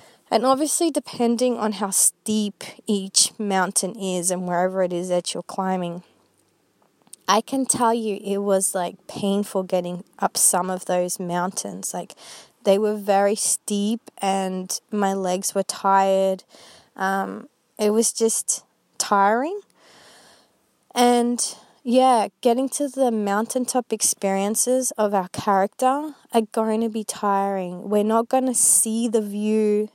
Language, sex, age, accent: English, female, 20-39, Australian